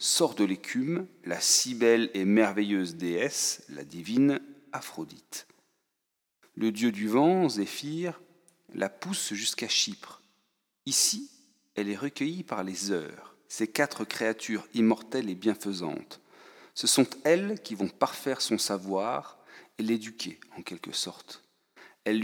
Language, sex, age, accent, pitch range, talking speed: French, male, 40-59, French, 100-140 Hz, 130 wpm